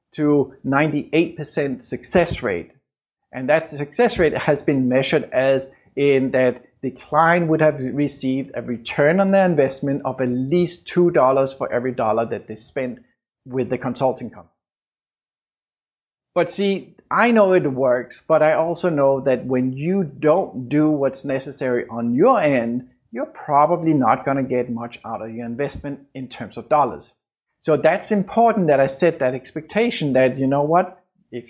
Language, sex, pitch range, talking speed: English, male, 130-160 Hz, 165 wpm